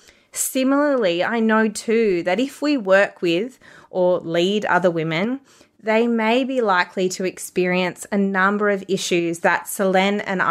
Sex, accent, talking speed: female, Australian, 150 wpm